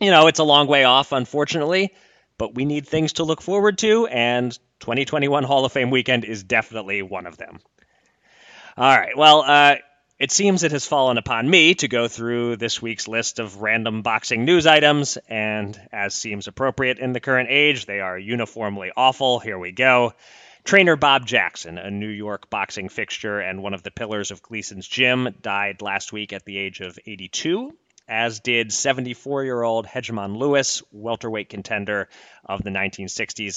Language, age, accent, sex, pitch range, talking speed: English, 30-49, American, male, 100-135 Hz, 175 wpm